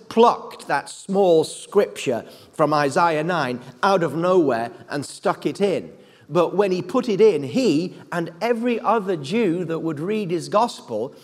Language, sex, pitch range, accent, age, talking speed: English, male, 155-205 Hz, British, 40-59, 160 wpm